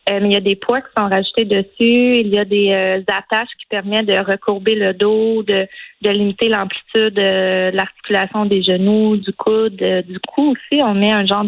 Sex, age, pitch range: female, 30-49, 195-215 Hz